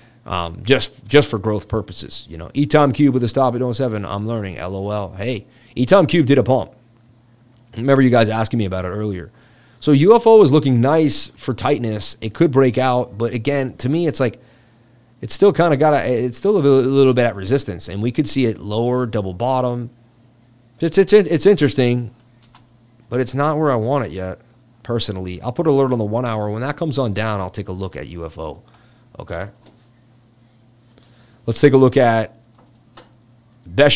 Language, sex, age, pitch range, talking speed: English, male, 30-49, 115-140 Hz, 195 wpm